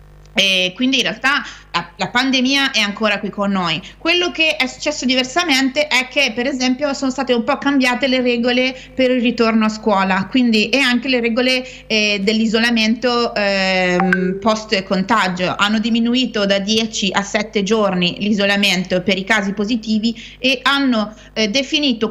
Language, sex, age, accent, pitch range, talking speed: Italian, female, 30-49, native, 210-260 Hz, 160 wpm